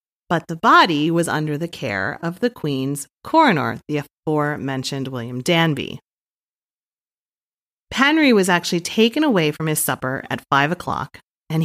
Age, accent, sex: 30-49, American, female